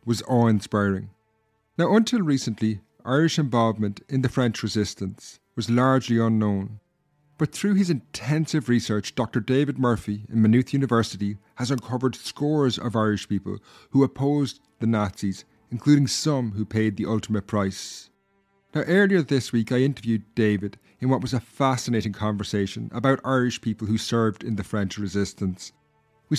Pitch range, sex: 105-135 Hz, male